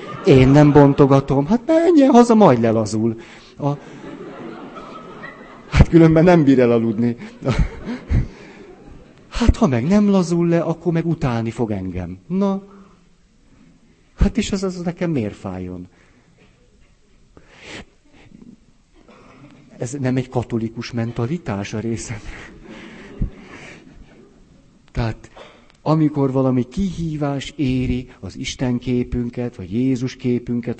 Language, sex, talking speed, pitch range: Hungarian, male, 100 wpm, 110-150 Hz